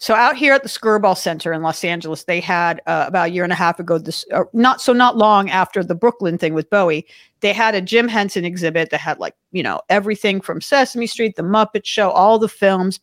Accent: American